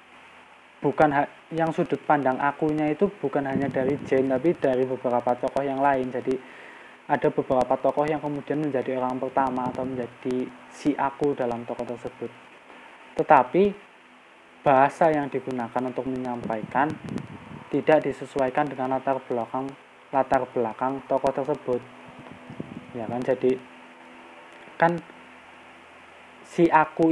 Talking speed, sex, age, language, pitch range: 120 wpm, male, 20-39, Indonesian, 125-150 Hz